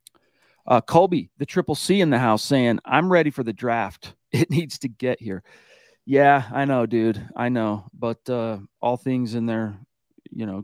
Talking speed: 185 wpm